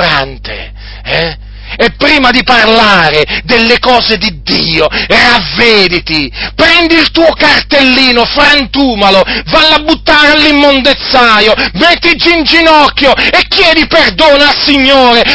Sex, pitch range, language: male, 170-275 Hz, Italian